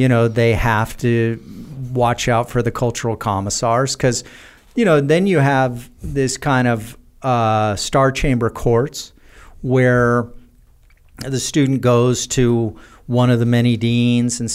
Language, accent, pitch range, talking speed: English, American, 115-135 Hz, 145 wpm